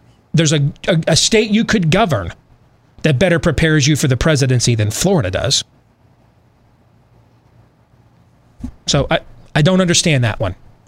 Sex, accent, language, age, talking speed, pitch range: male, American, English, 30-49, 140 wpm, 120-165 Hz